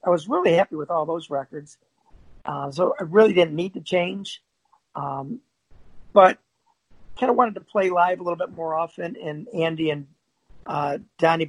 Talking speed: 180 wpm